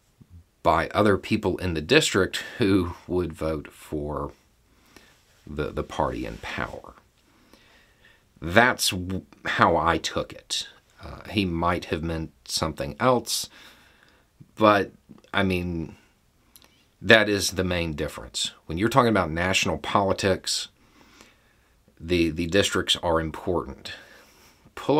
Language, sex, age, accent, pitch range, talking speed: English, male, 50-69, American, 80-100 Hz, 115 wpm